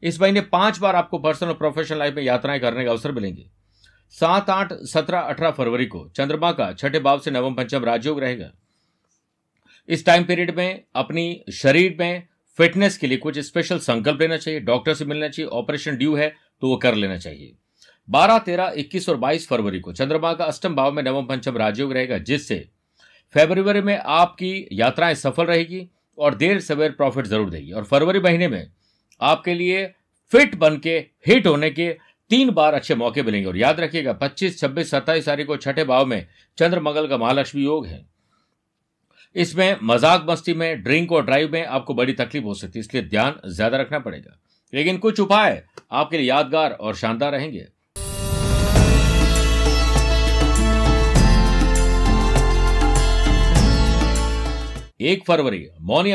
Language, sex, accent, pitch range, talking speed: Hindi, male, native, 115-170 Hz, 160 wpm